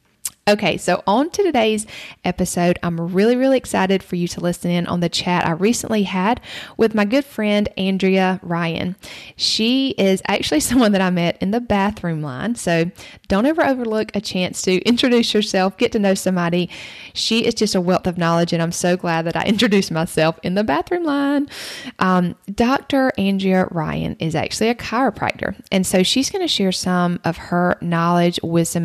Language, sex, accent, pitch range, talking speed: English, female, American, 175-215 Hz, 185 wpm